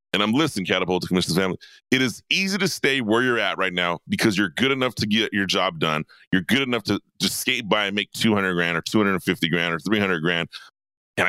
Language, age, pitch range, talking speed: English, 30-49, 95-120 Hz, 235 wpm